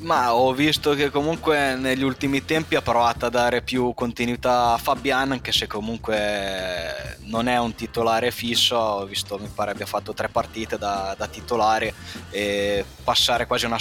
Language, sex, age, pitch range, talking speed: Italian, male, 20-39, 100-125 Hz, 170 wpm